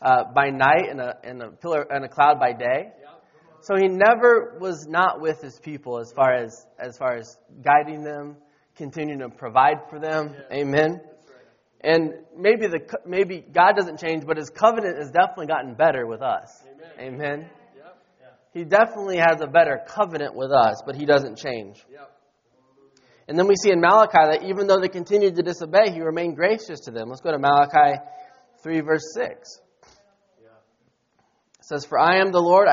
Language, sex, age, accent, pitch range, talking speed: English, male, 20-39, American, 145-190 Hz, 170 wpm